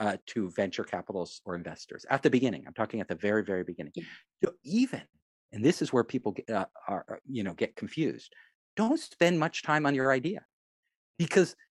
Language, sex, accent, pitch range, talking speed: English, male, American, 125-180 Hz, 195 wpm